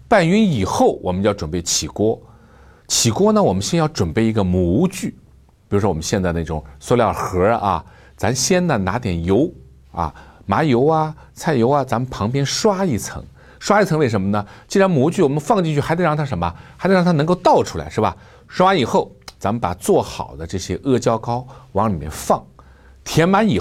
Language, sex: Chinese, male